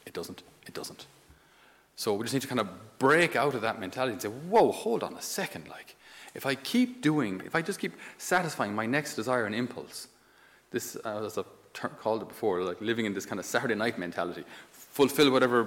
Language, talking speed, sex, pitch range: English, 210 wpm, male, 110-150 Hz